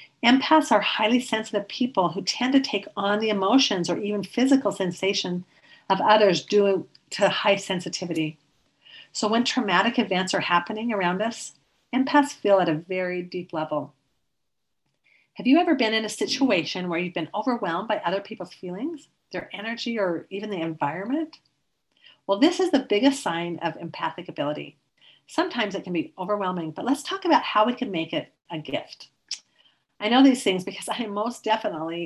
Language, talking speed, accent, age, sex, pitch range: English, 170 wpm, American, 50-69, female, 175-245 Hz